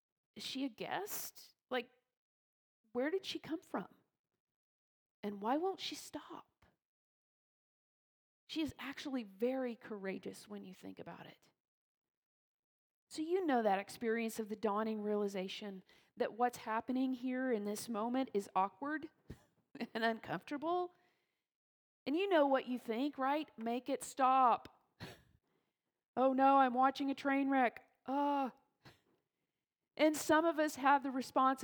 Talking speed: 135 wpm